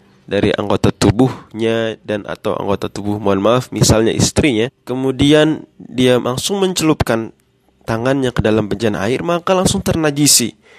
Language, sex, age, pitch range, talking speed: Indonesian, male, 20-39, 115-150 Hz, 130 wpm